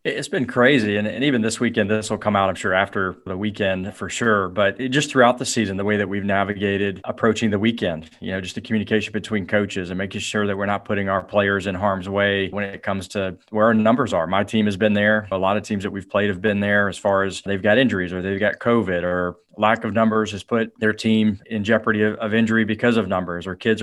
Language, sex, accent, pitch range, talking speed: English, male, American, 95-110 Hz, 255 wpm